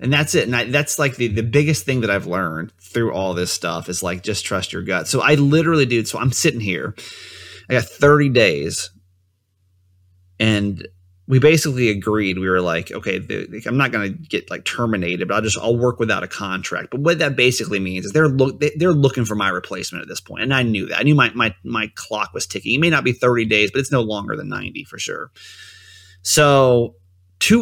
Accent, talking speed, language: American, 230 wpm, English